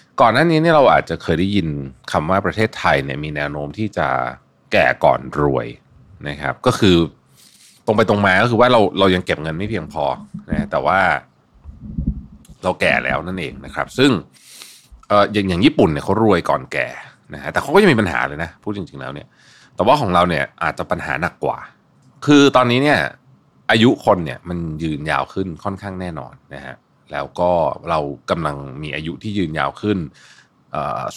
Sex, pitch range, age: male, 75-110 Hz, 30-49